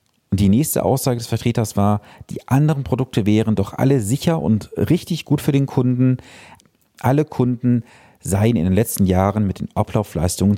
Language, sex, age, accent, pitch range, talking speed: German, male, 40-59, German, 100-135 Hz, 170 wpm